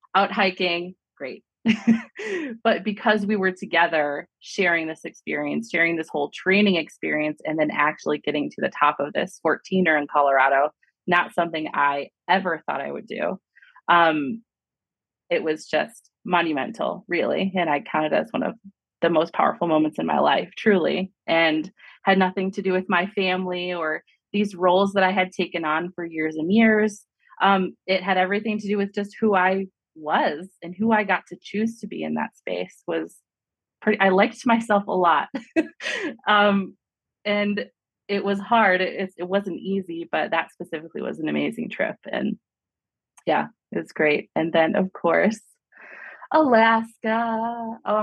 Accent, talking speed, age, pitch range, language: American, 165 wpm, 20-39, 170-210 Hz, English